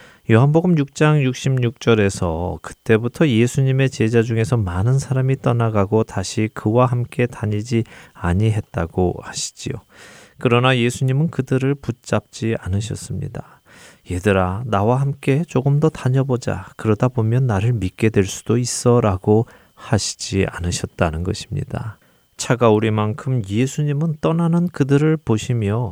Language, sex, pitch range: Korean, male, 100-125 Hz